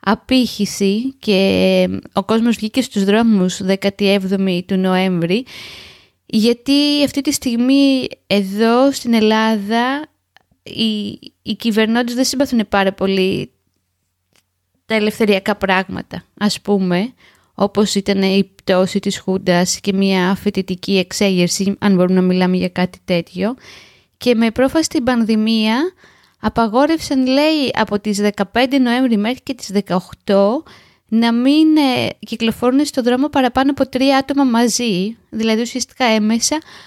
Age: 20-39